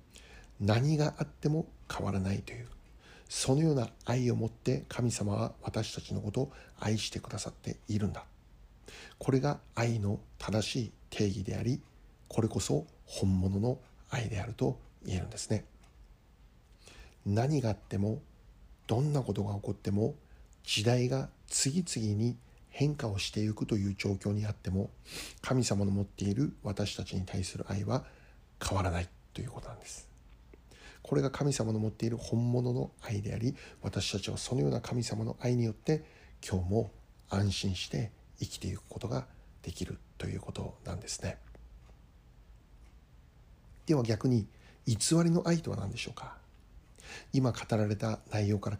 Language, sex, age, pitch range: Japanese, male, 60-79, 95-120 Hz